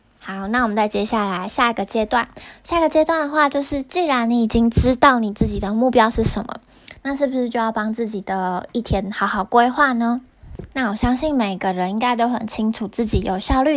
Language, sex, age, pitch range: Chinese, female, 20-39, 210-260 Hz